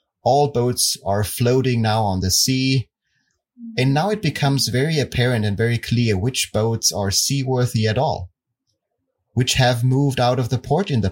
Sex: male